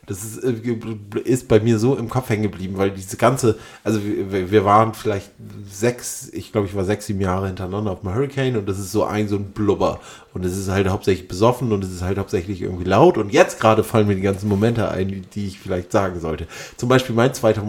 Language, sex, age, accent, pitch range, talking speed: German, male, 30-49, German, 105-130 Hz, 235 wpm